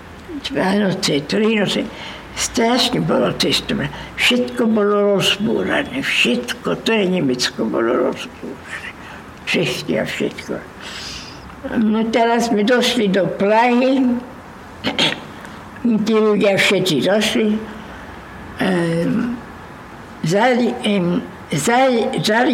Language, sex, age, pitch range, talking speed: Slovak, female, 60-79, 190-235 Hz, 85 wpm